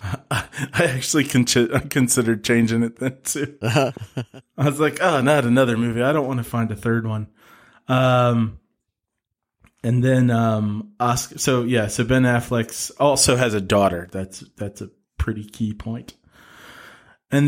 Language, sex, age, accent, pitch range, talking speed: English, male, 20-39, American, 110-130 Hz, 150 wpm